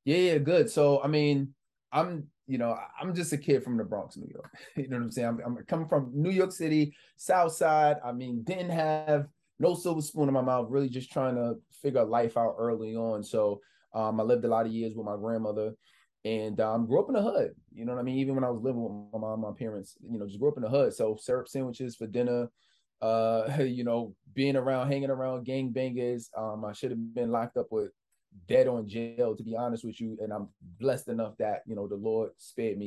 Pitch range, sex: 110-135 Hz, male